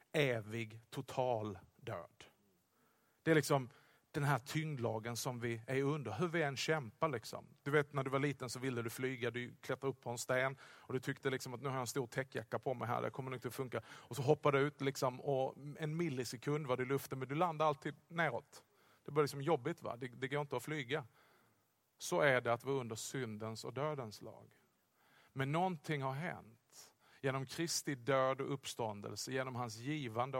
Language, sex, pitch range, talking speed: Swedish, male, 125-155 Hz, 210 wpm